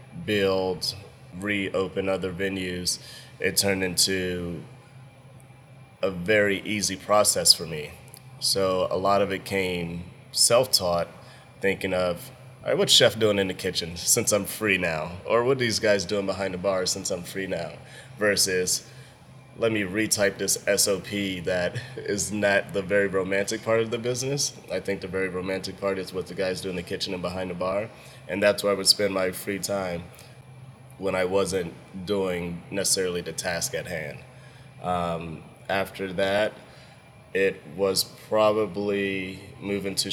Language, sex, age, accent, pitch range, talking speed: English, male, 20-39, American, 90-105 Hz, 160 wpm